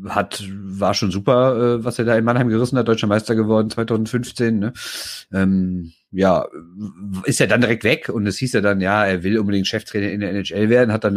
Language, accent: German, German